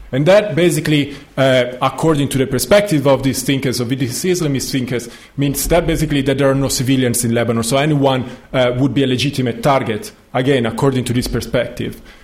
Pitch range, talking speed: 125-165 Hz, 185 wpm